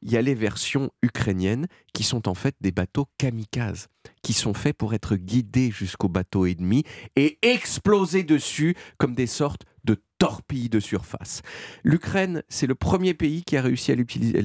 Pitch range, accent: 125-195 Hz, French